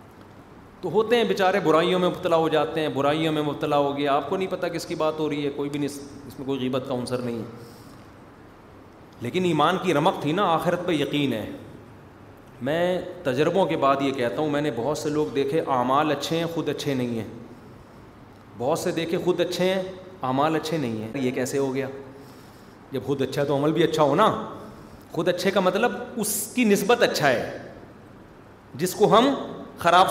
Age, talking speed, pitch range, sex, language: 30-49, 200 wpm, 140-180 Hz, male, Urdu